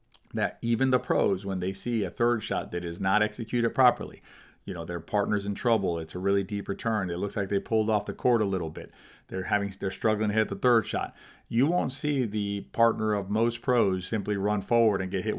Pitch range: 100-120 Hz